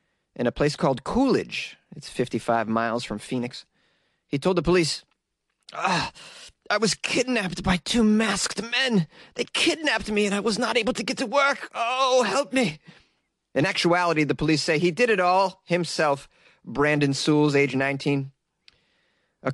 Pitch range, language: 140-175 Hz, English